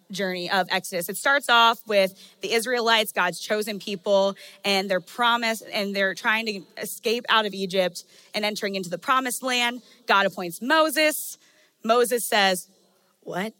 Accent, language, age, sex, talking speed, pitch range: American, English, 20-39, female, 155 wpm, 185-225 Hz